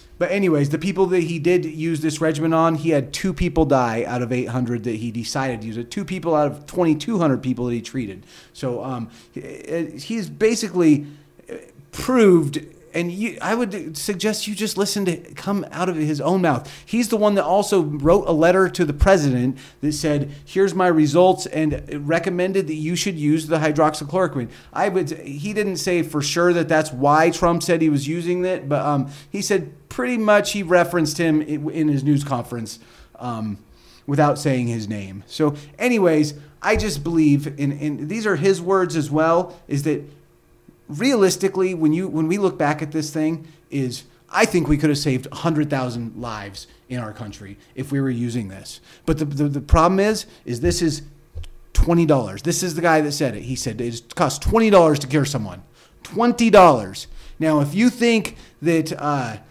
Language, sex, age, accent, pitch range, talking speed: English, male, 30-49, American, 140-180 Hz, 195 wpm